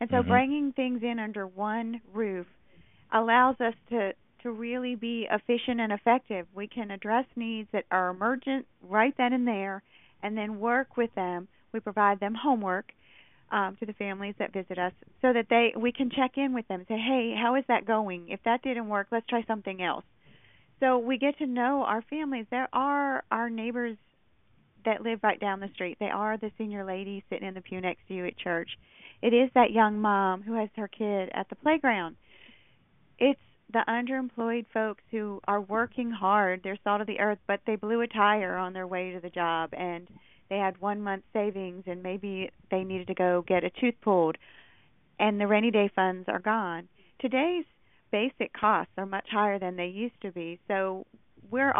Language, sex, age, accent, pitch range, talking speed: English, female, 40-59, American, 190-235 Hz, 195 wpm